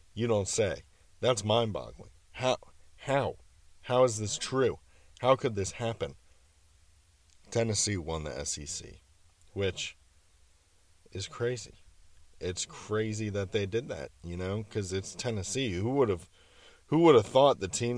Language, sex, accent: English, male, American